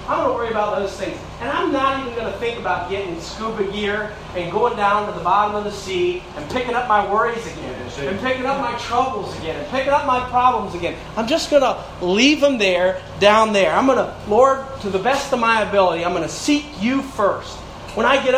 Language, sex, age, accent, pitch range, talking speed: English, male, 40-59, American, 190-250 Hz, 240 wpm